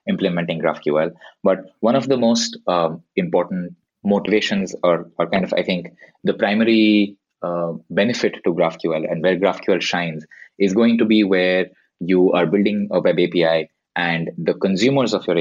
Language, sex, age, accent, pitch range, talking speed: English, male, 20-39, Indian, 85-110 Hz, 165 wpm